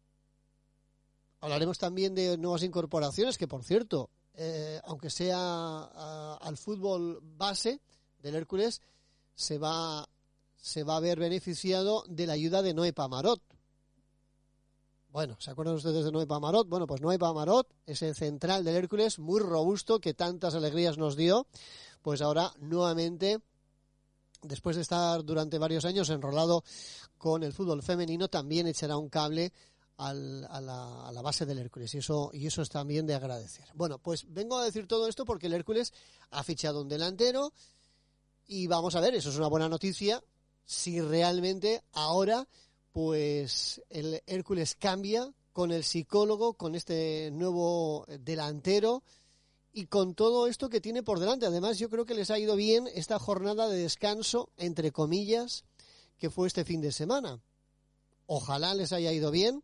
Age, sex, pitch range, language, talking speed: 30-49, male, 150-190 Hz, Spanish, 155 wpm